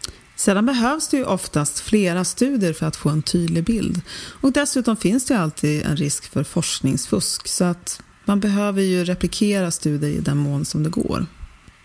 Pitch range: 160-230 Hz